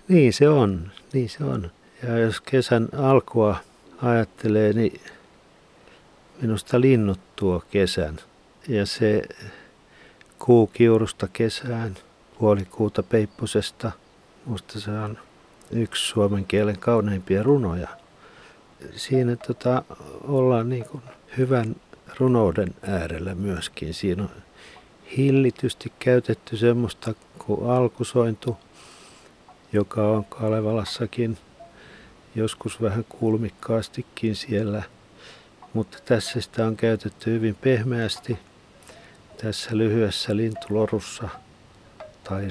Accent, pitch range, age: native, 105-120 Hz, 50-69